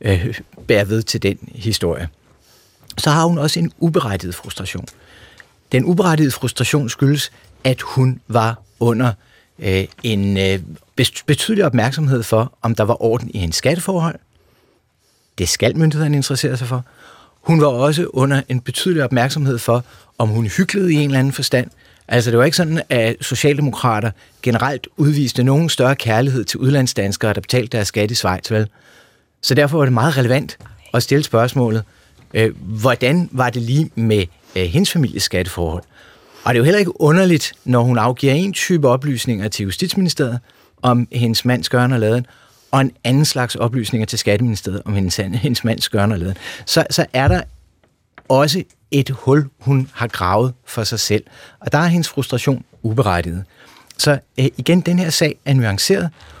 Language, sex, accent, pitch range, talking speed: Danish, male, native, 110-145 Hz, 165 wpm